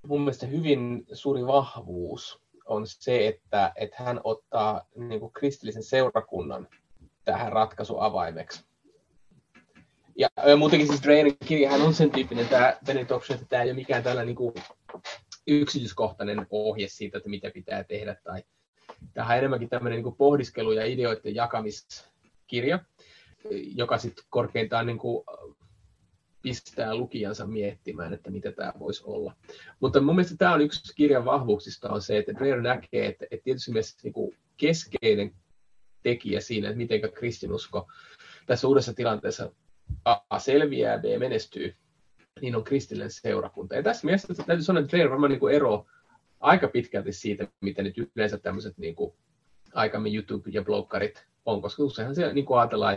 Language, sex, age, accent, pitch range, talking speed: Finnish, male, 20-39, native, 105-140 Hz, 145 wpm